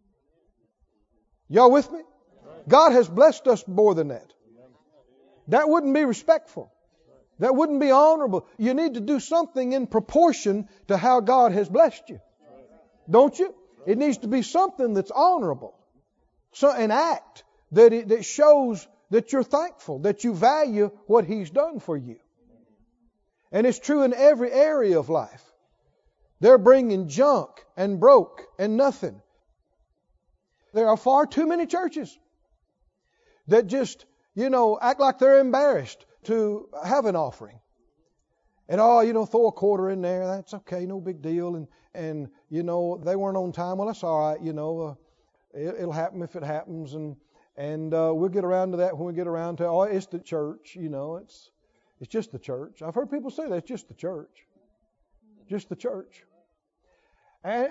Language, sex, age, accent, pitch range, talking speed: English, male, 50-69, American, 180-275 Hz, 170 wpm